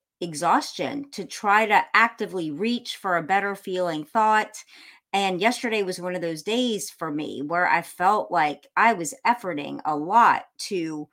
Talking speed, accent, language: 160 wpm, American, English